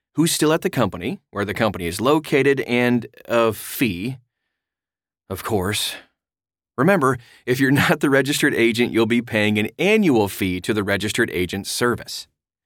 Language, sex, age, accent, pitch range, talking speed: English, male, 30-49, American, 105-140 Hz, 155 wpm